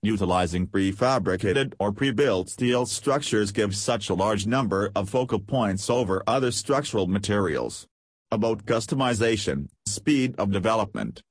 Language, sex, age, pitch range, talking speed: English, male, 40-59, 95-115 Hz, 125 wpm